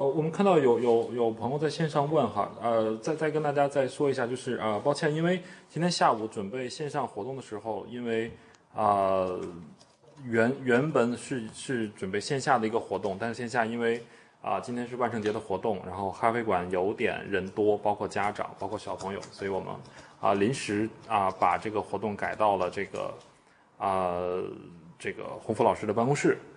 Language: Chinese